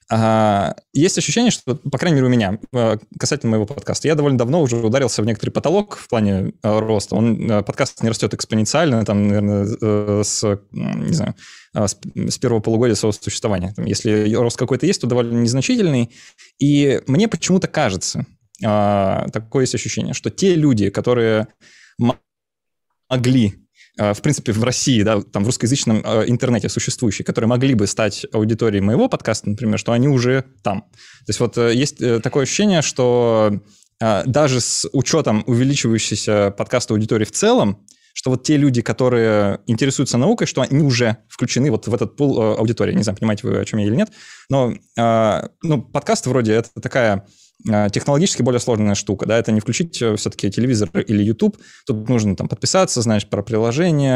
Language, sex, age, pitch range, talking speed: Russian, male, 20-39, 105-130 Hz, 155 wpm